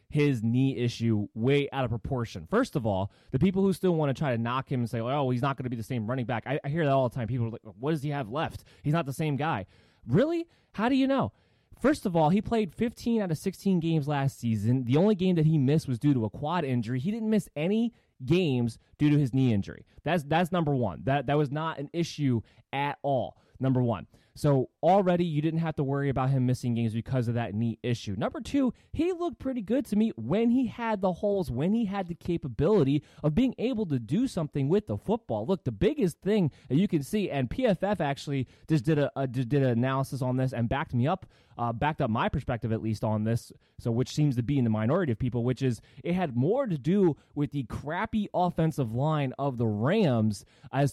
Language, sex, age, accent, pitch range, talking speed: English, male, 20-39, American, 125-175 Hz, 245 wpm